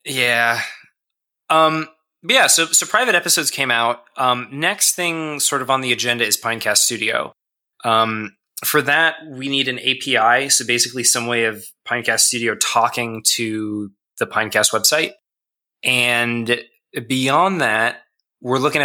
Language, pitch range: English, 110-145 Hz